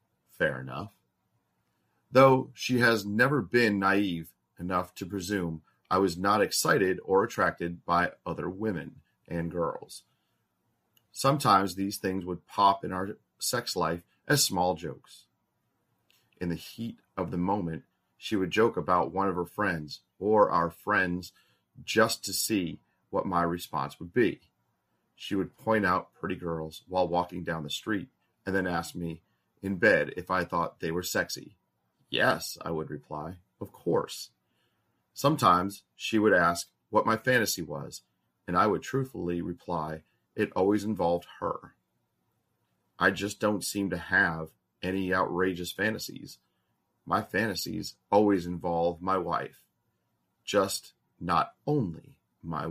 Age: 30-49